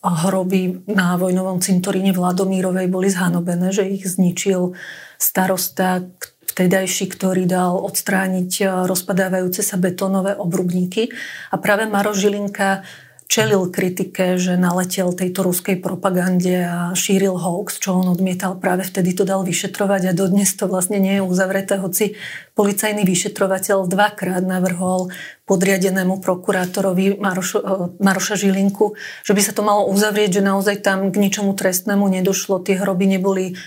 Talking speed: 135 wpm